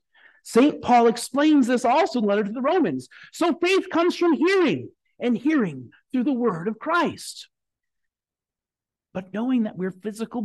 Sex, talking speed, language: male, 160 wpm, English